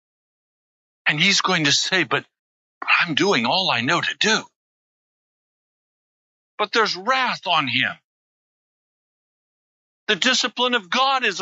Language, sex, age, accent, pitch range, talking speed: English, male, 50-69, American, 180-260 Hz, 120 wpm